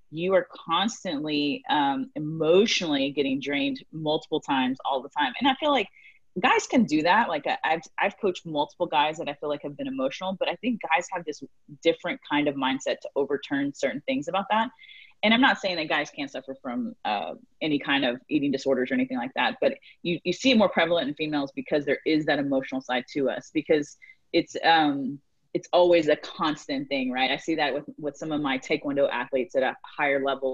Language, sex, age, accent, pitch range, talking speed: English, female, 30-49, American, 140-195 Hz, 215 wpm